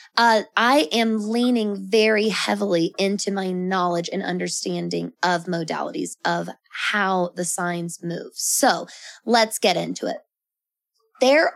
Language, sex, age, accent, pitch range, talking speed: English, female, 20-39, American, 185-235 Hz, 125 wpm